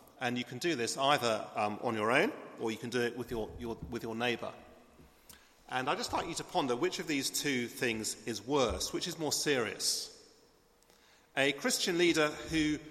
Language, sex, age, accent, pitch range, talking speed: English, male, 40-59, British, 120-170 Hz, 200 wpm